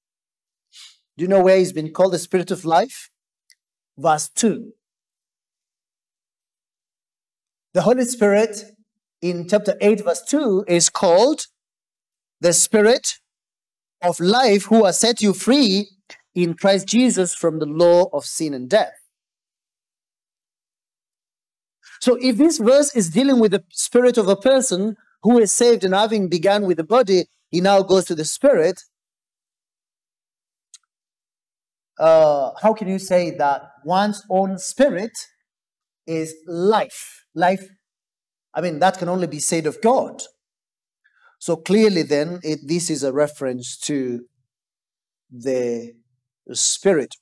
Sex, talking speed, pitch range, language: male, 125 wpm, 165-225 Hz, English